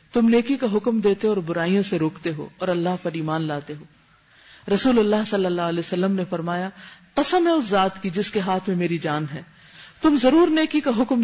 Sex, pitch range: female, 170-230 Hz